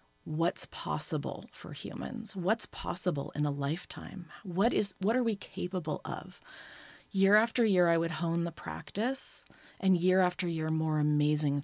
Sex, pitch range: female, 150-180 Hz